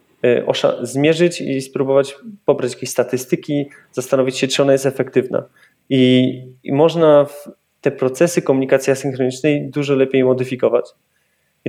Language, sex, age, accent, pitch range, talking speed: Polish, male, 20-39, native, 125-145 Hz, 120 wpm